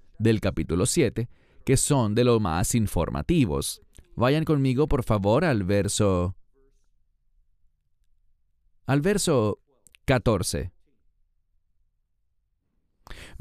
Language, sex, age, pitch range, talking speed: English, male, 30-49, 100-150 Hz, 80 wpm